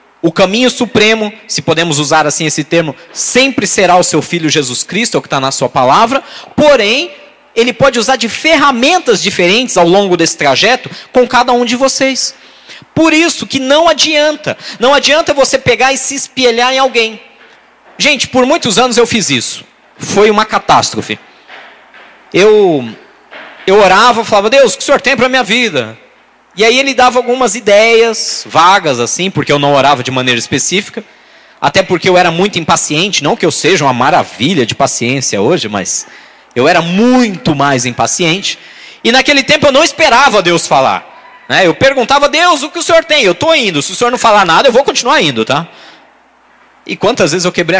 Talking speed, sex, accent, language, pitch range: 185 wpm, male, Brazilian, Portuguese, 175-270 Hz